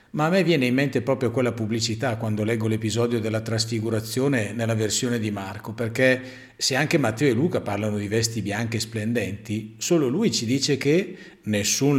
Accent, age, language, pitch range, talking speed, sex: native, 50-69, Italian, 110-130 Hz, 180 wpm, male